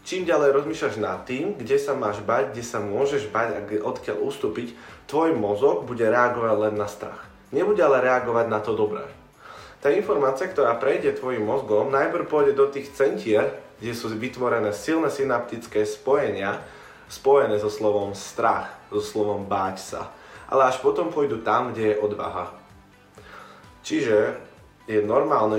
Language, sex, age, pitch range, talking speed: Slovak, male, 20-39, 105-140 Hz, 155 wpm